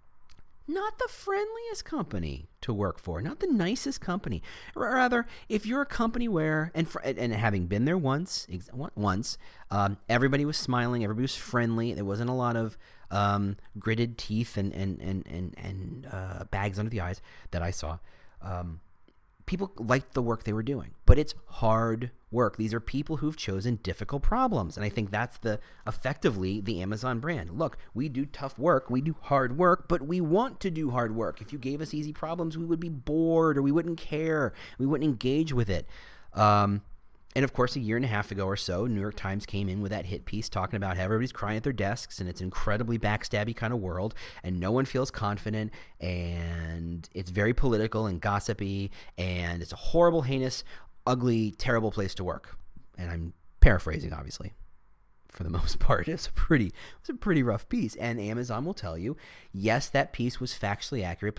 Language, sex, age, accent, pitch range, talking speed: English, male, 40-59, American, 100-140 Hz, 195 wpm